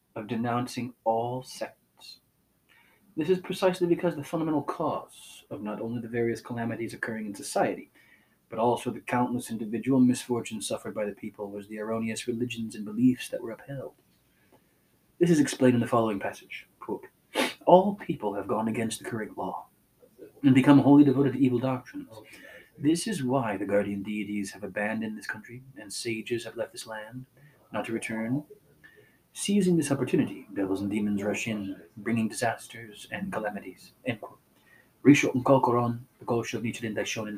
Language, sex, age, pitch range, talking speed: English, male, 30-49, 110-145 Hz, 160 wpm